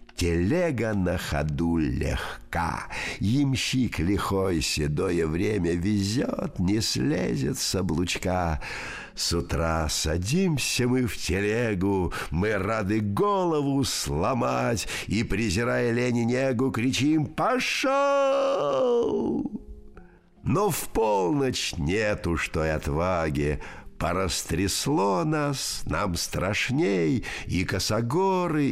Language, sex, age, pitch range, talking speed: Russian, male, 50-69, 80-120 Hz, 85 wpm